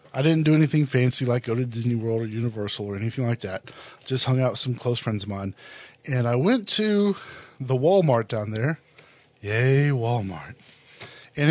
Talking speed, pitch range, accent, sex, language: 190 wpm, 120-145 Hz, American, male, English